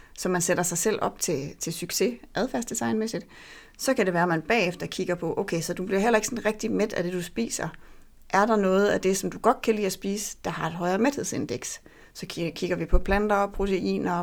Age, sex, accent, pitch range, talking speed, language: 30-49, female, native, 165-205 Hz, 235 wpm, Danish